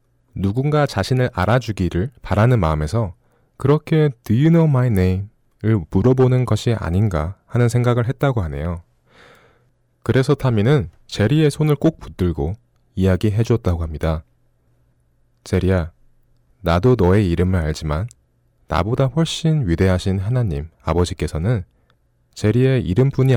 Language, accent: Korean, native